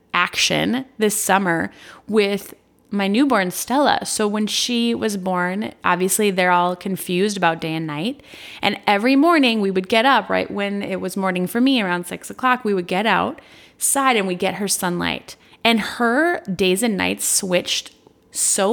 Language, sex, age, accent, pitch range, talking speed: English, female, 20-39, American, 185-235 Hz, 170 wpm